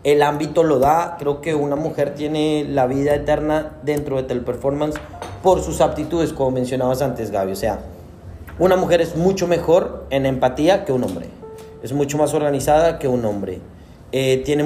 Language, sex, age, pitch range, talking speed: English, male, 30-49, 130-185 Hz, 175 wpm